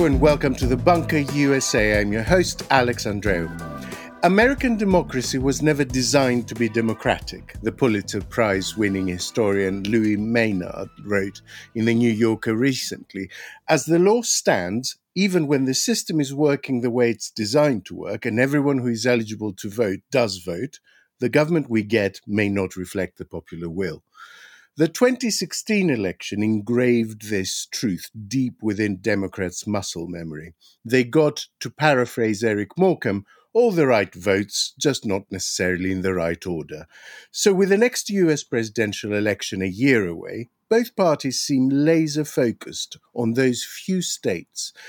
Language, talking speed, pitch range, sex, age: English, 150 wpm, 100-150 Hz, male, 50-69